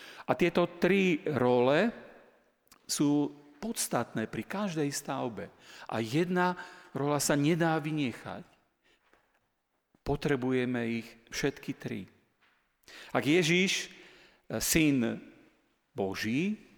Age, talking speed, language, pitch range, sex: 40-59, 80 wpm, Slovak, 125-165 Hz, male